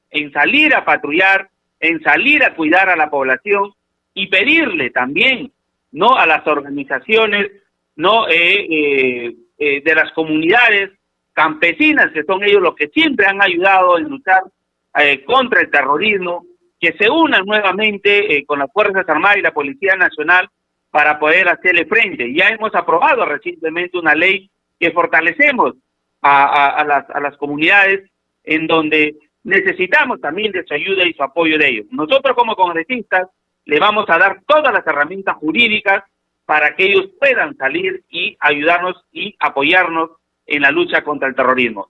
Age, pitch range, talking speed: 40-59, 155-240 Hz, 160 wpm